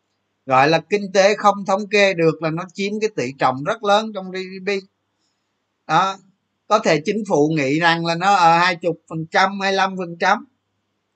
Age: 20-39